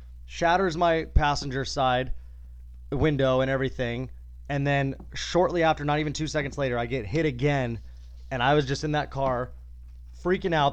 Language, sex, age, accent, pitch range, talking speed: English, male, 20-39, American, 105-150 Hz, 160 wpm